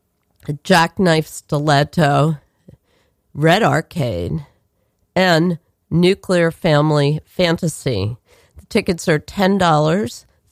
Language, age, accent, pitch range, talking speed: English, 40-59, American, 145-180 Hz, 75 wpm